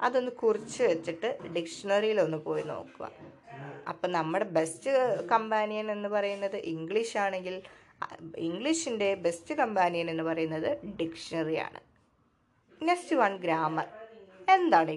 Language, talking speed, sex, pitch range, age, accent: Malayalam, 100 wpm, female, 170-235 Hz, 20-39, native